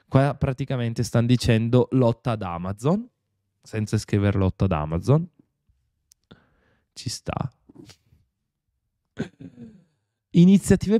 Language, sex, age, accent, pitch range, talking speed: Italian, male, 20-39, native, 100-135 Hz, 80 wpm